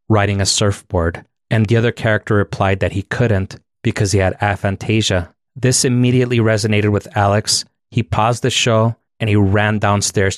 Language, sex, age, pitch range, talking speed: English, male, 30-49, 100-120 Hz, 160 wpm